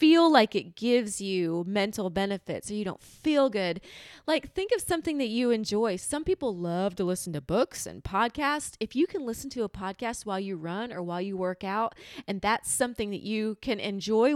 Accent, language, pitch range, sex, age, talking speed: American, English, 210-310 Hz, female, 30-49, 210 wpm